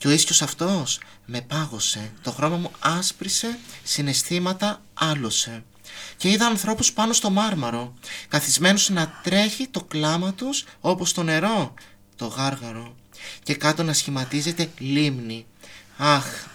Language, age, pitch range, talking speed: Greek, 30-49, 115-165 Hz, 125 wpm